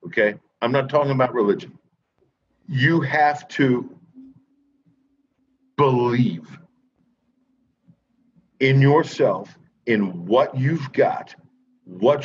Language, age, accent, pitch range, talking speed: English, 50-69, American, 125-185 Hz, 85 wpm